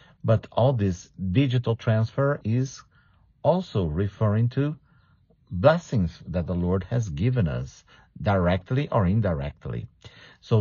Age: 50-69